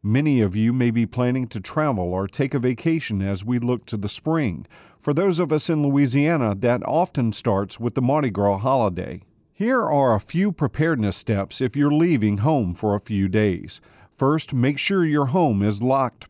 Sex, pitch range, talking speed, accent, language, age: male, 105-140 Hz, 195 wpm, American, English, 40-59